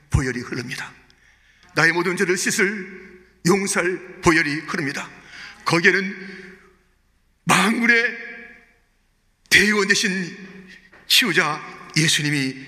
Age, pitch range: 40-59, 185-250 Hz